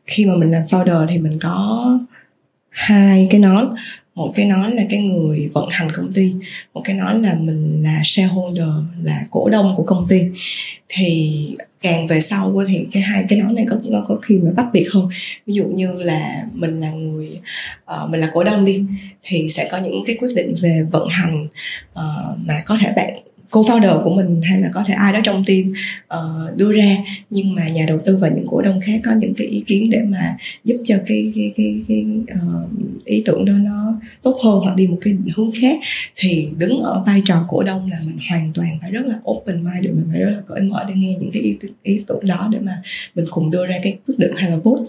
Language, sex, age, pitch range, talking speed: Vietnamese, female, 20-39, 175-215 Hz, 225 wpm